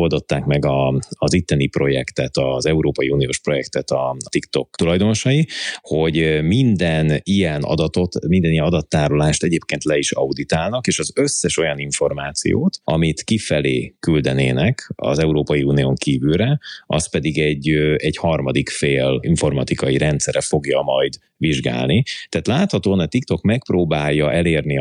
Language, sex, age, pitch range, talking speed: Hungarian, male, 30-49, 70-85 Hz, 125 wpm